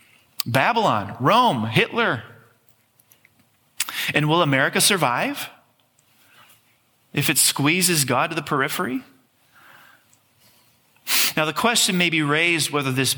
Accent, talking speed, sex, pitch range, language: American, 100 wpm, male, 120-150 Hz, English